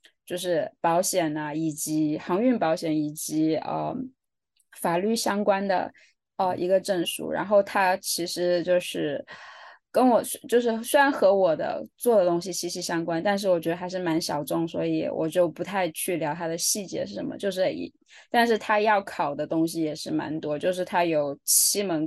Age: 20-39